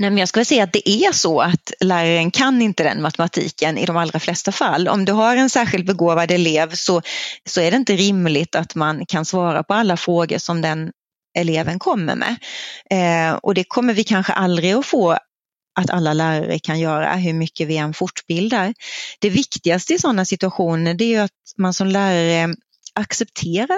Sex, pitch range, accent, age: female, 170-225 Hz, native, 30-49